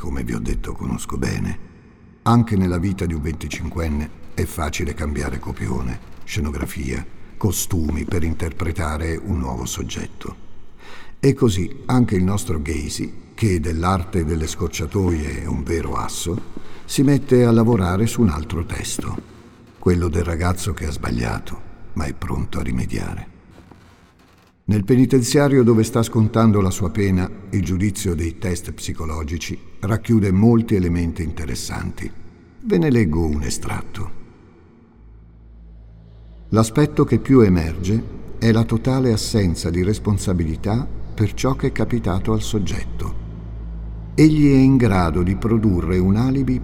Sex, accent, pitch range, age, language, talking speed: male, native, 85-110 Hz, 60-79, Italian, 135 wpm